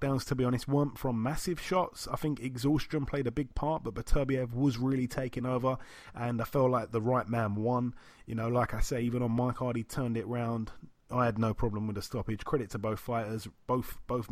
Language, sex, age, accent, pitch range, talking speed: English, male, 30-49, British, 115-135 Hz, 225 wpm